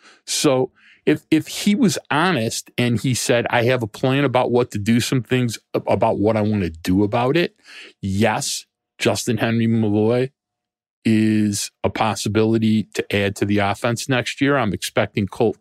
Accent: American